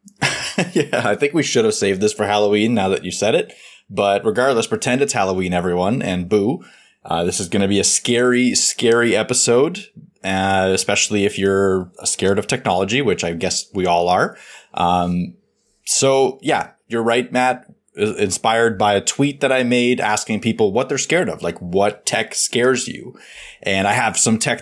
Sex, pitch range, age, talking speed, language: male, 95-125 Hz, 20-39, 185 wpm, English